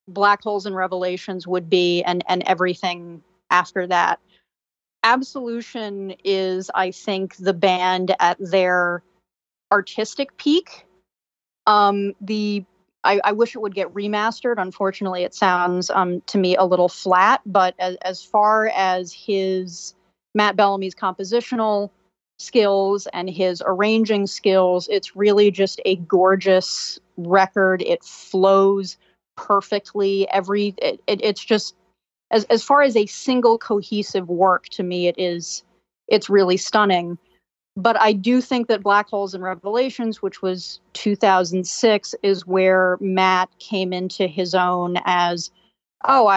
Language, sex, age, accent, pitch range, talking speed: English, female, 30-49, American, 185-205 Hz, 135 wpm